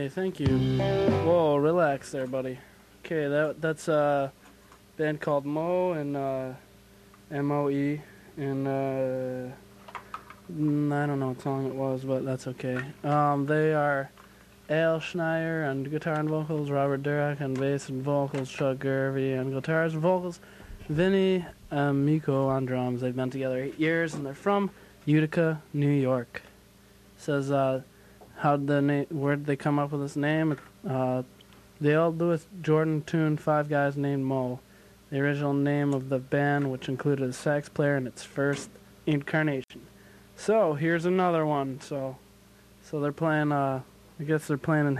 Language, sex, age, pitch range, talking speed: English, male, 20-39, 130-155 Hz, 160 wpm